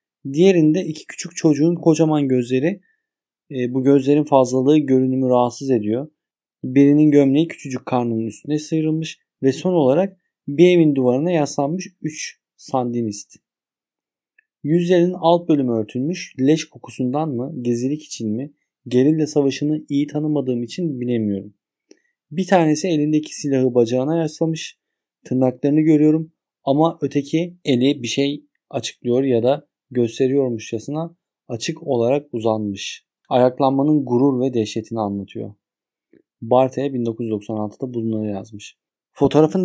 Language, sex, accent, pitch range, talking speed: Turkish, male, native, 125-160 Hz, 110 wpm